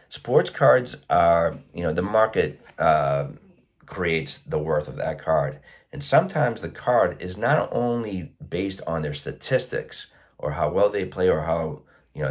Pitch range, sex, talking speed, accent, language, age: 80-95 Hz, male, 165 wpm, American, English, 30-49